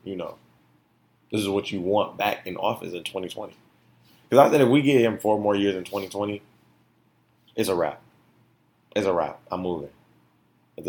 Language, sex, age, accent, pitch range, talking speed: English, male, 30-49, American, 80-105 Hz, 180 wpm